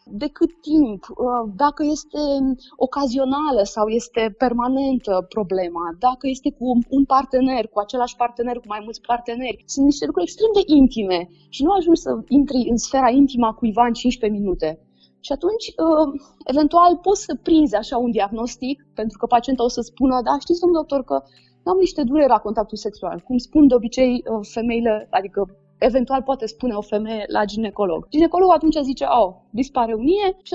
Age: 20-39